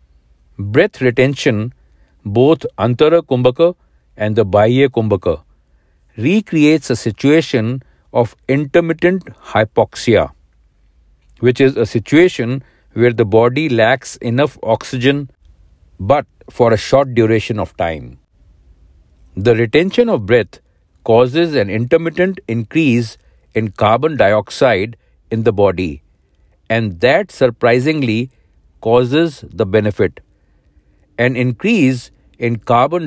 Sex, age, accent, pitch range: male, 60-79, Indian, 95-135 Hz